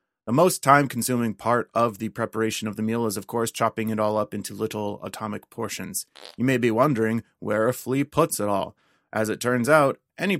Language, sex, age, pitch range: English, male, 30-49, 105-125 Hz